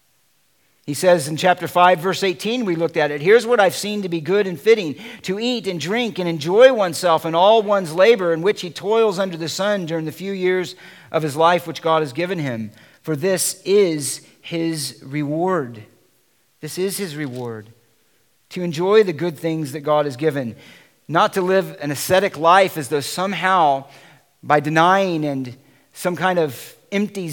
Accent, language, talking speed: American, English, 185 wpm